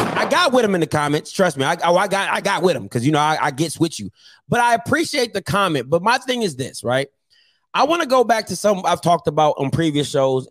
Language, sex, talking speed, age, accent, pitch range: English, male, 275 wpm, 30-49, American, 145-210 Hz